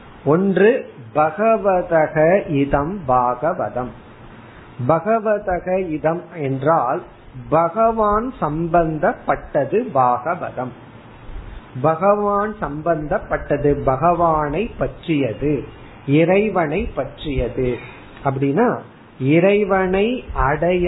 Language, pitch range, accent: Tamil, 140-195 Hz, native